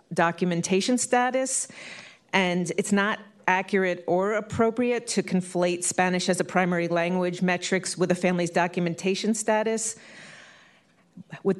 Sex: female